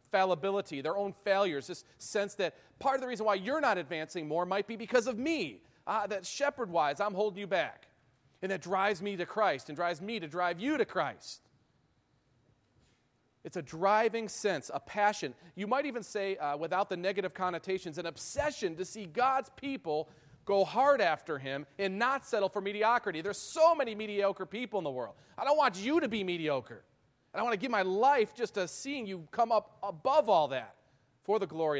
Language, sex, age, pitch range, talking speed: English, male, 40-59, 175-235 Hz, 200 wpm